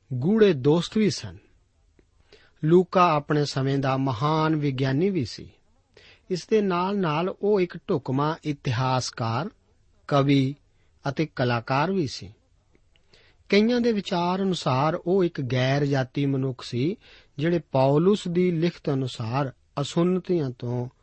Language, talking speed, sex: Punjabi, 120 wpm, male